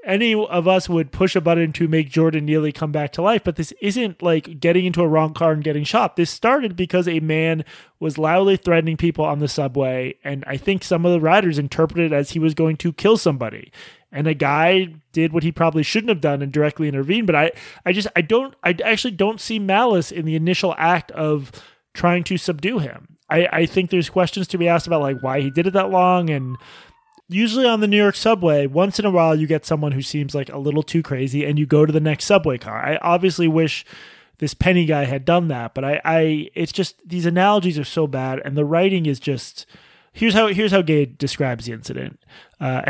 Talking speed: 235 wpm